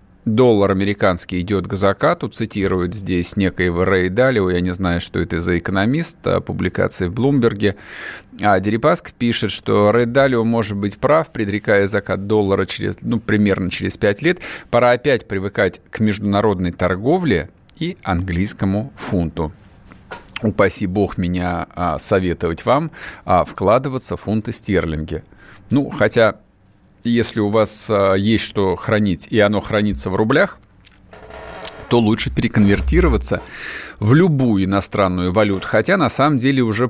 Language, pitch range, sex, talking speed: Russian, 90-115 Hz, male, 125 wpm